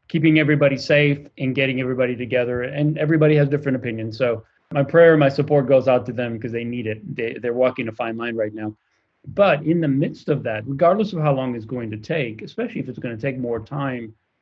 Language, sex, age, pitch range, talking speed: English, male, 30-49, 125-150 Hz, 230 wpm